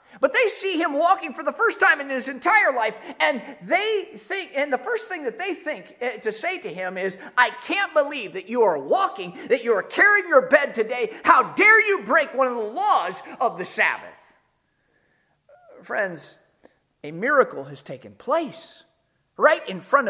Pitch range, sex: 205-330 Hz, male